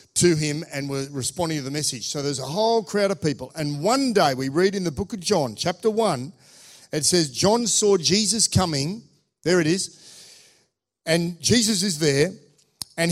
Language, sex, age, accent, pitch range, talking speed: English, male, 50-69, Australian, 145-195 Hz, 190 wpm